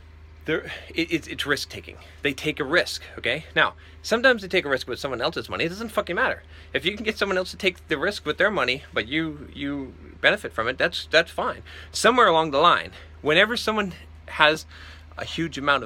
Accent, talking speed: American, 210 wpm